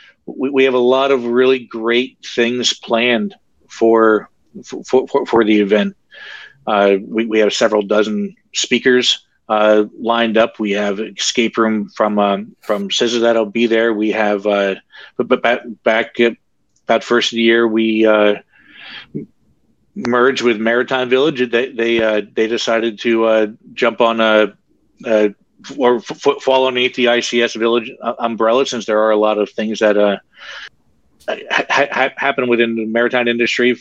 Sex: male